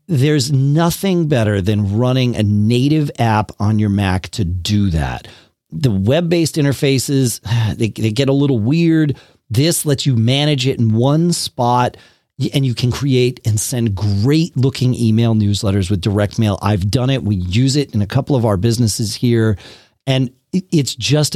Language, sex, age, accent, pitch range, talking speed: English, male, 40-59, American, 105-150 Hz, 170 wpm